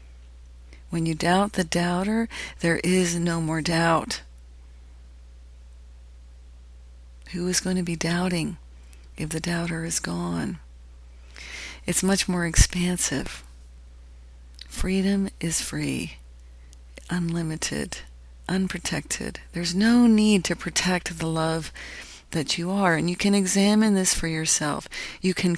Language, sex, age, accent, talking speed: English, female, 40-59, American, 115 wpm